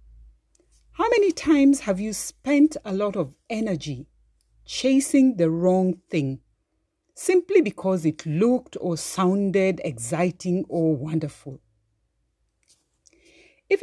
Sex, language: female, English